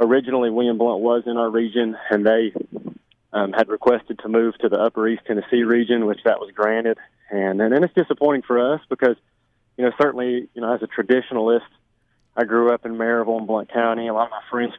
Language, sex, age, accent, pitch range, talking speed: English, male, 30-49, American, 110-125 Hz, 210 wpm